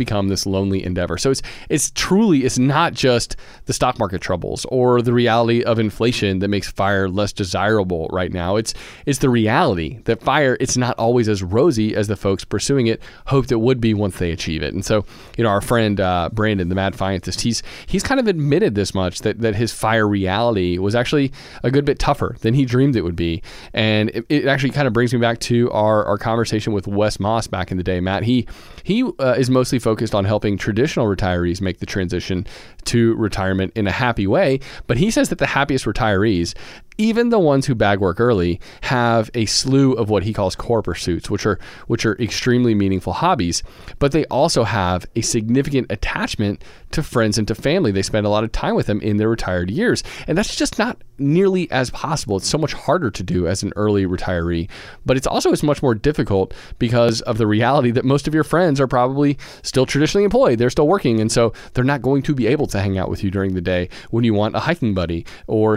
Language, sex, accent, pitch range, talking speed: English, male, American, 100-130 Hz, 225 wpm